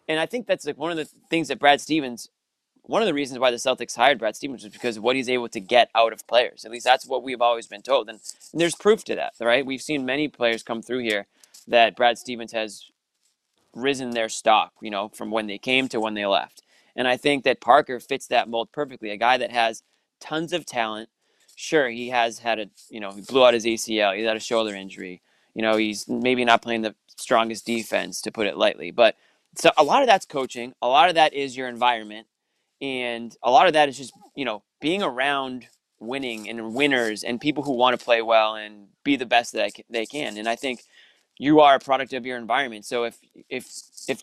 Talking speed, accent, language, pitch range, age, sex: 235 wpm, American, English, 115-145 Hz, 20-39, male